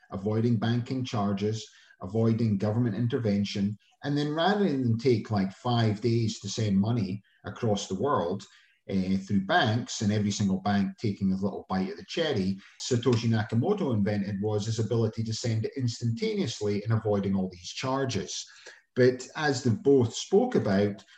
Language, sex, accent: English, male, British